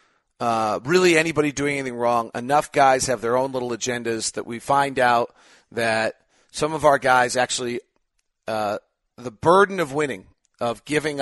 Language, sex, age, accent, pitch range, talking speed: English, male, 40-59, American, 110-135 Hz, 160 wpm